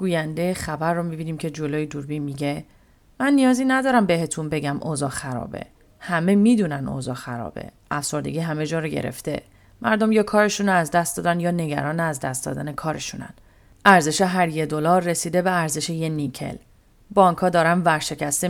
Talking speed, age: 160 wpm, 40-59